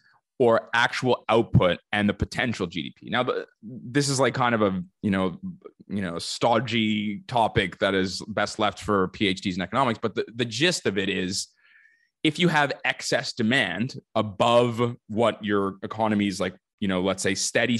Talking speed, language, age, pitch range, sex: 170 wpm, English, 20-39, 100-125 Hz, male